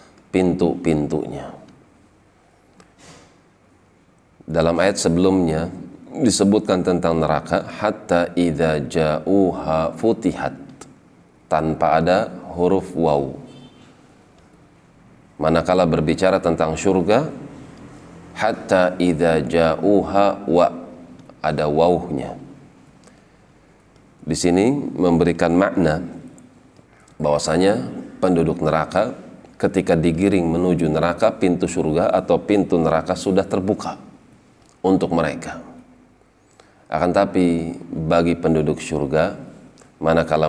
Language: Indonesian